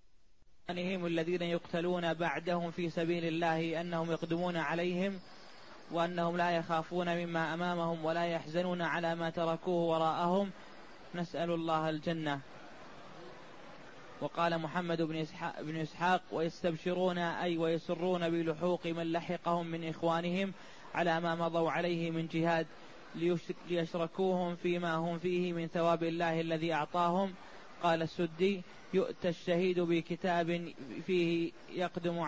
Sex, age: male, 20-39